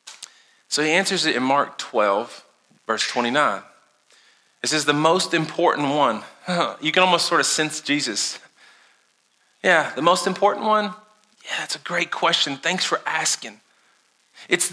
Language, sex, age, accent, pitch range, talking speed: English, male, 40-59, American, 155-195 Hz, 145 wpm